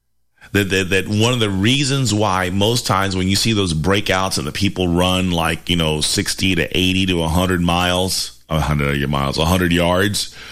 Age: 30-49